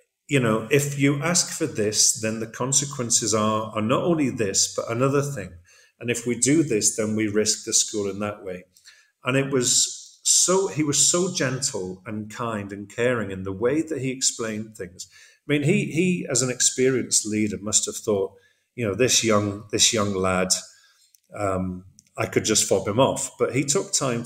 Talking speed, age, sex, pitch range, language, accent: 195 wpm, 40-59, male, 105-140 Hz, English, British